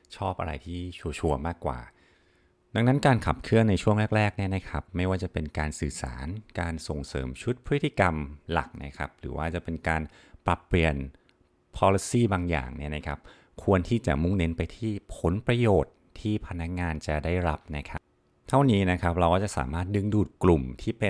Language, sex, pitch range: Thai, male, 75-100 Hz